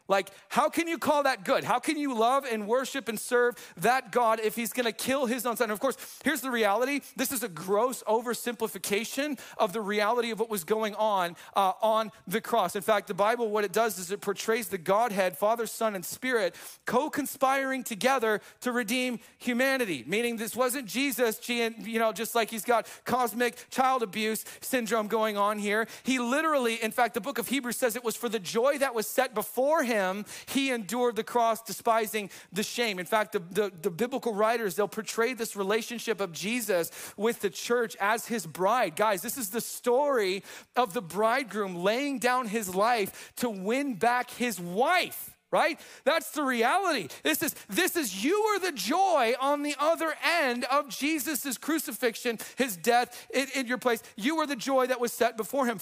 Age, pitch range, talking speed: 40-59, 210-255 Hz, 195 wpm